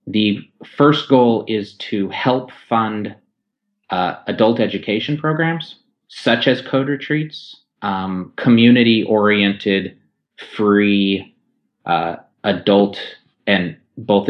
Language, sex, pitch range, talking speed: English, male, 90-115 Hz, 90 wpm